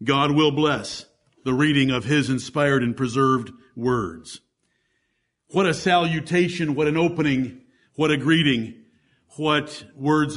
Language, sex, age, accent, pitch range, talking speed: English, male, 50-69, American, 135-160 Hz, 125 wpm